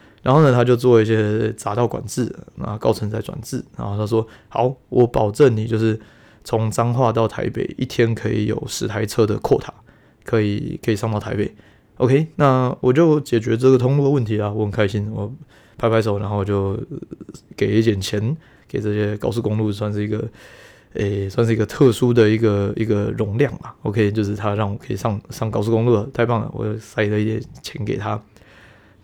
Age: 20-39